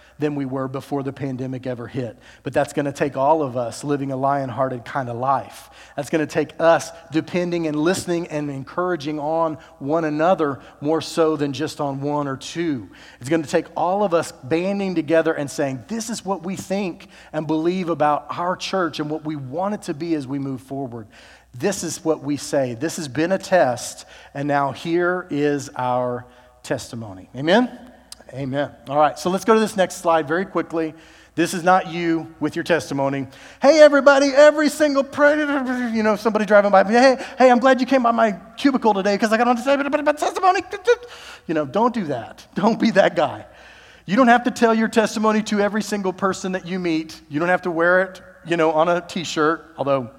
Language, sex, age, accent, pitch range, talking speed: English, male, 40-59, American, 145-205 Hz, 200 wpm